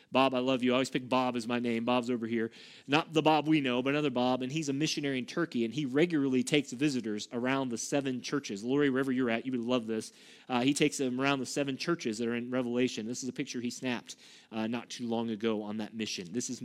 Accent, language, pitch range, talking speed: American, English, 125-180 Hz, 265 wpm